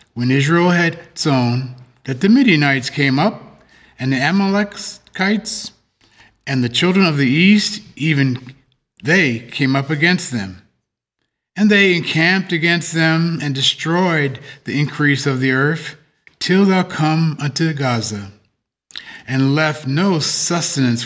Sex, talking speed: male, 130 wpm